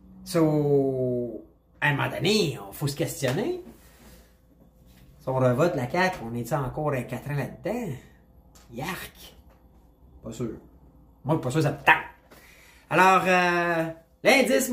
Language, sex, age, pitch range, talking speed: French, male, 30-49, 130-180 Hz, 140 wpm